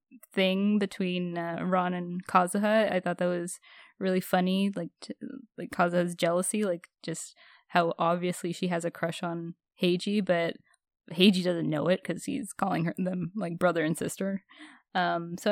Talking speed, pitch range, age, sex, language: 165 wpm, 175-215 Hz, 10-29, female, English